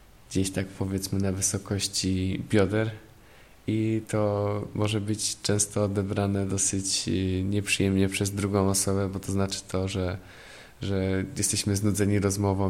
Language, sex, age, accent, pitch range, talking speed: Polish, male, 20-39, native, 95-105 Hz, 125 wpm